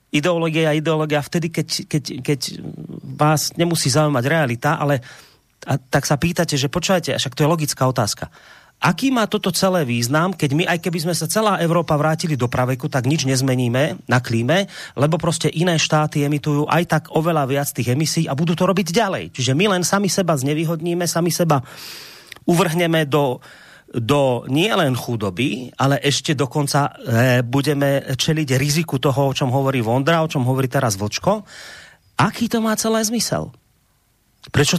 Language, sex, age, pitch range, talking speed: Slovak, male, 30-49, 130-170 Hz, 165 wpm